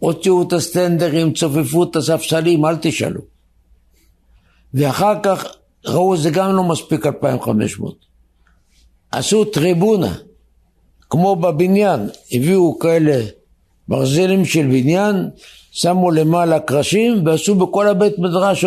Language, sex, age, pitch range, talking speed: Hebrew, male, 60-79, 135-195 Hz, 110 wpm